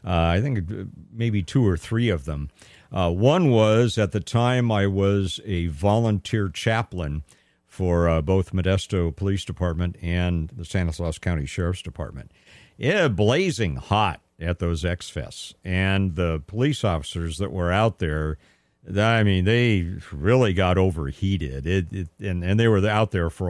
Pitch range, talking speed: 85-110 Hz, 155 wpm